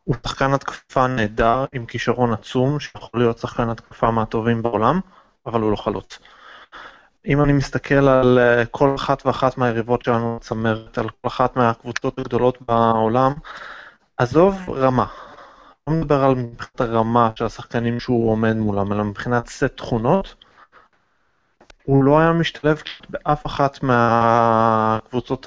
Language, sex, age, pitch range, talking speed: Hebrew, male, 20-39, 115-135 Hz, 130 wpm